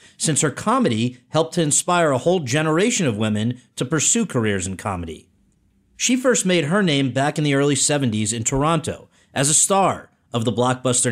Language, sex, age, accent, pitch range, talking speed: English, male, 40-59, American, 120-160 Hz, 185 wpm